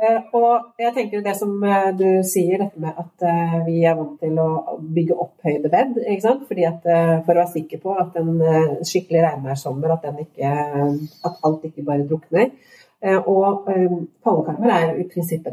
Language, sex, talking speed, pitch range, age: English, female, 175 wpm, 155-190 Hz, 40-59